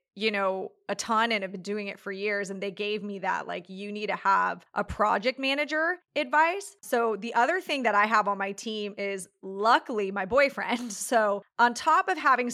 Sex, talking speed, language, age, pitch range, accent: female, 210 wpm, English, 30-49, 200-255 Hz, American